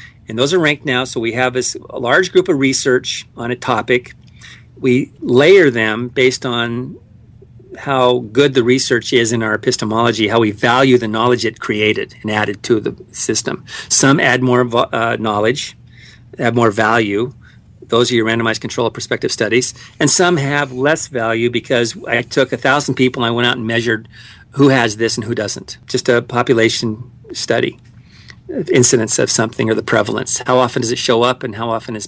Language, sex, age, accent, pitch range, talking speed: English, male, 50-69, American, 115-130 Hz, 190 wpm